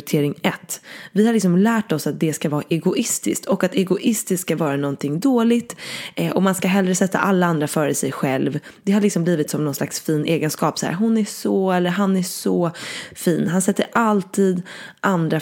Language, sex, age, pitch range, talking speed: English, female, 20-39, 155-200 Hz, 200 wpm